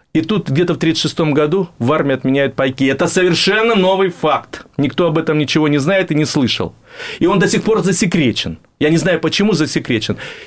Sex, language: male, Russian